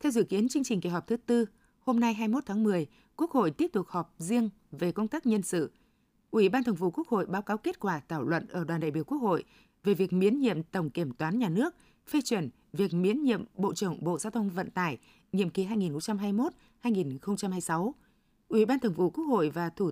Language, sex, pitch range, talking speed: Vietnamese, female, 180-235 Hz, 225 wpm